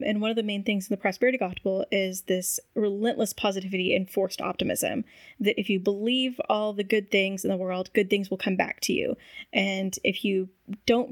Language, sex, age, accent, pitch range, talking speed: English, female, 10-29, American, 195-235 Hz, 210 wpm